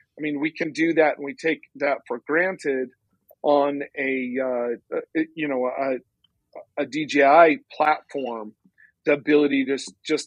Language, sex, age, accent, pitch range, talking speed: English, male, 40-59, American, 140-165 Hz, 145 wpm